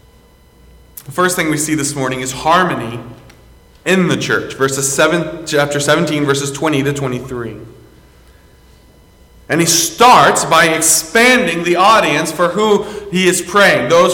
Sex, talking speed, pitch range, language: male, 140 wpm, 135-210 Hz, English